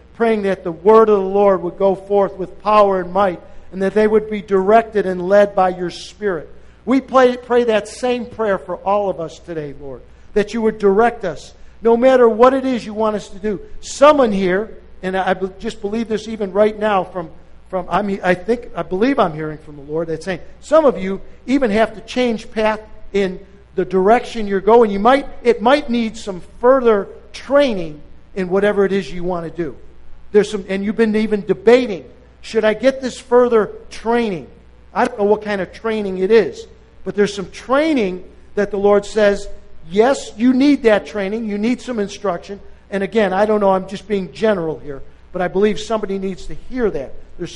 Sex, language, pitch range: male, English, 190-230 Hz